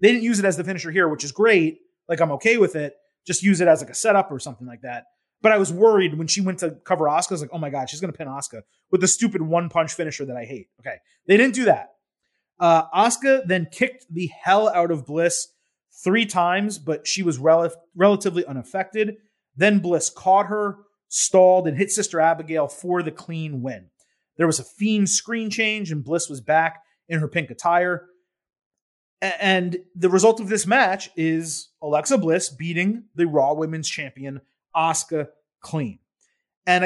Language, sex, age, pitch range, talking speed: English, male, 30-49, 160-210 Hz, 200 wpm